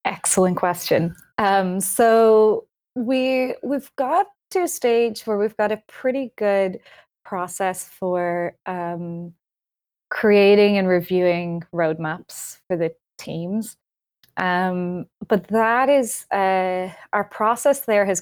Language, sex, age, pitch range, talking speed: English, female, 20-39, 180-215 Hz, 115 wpm